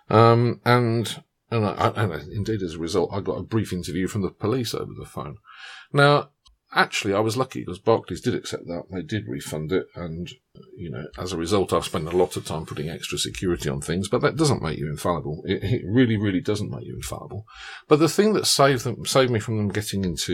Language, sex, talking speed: English, male, 235 wpm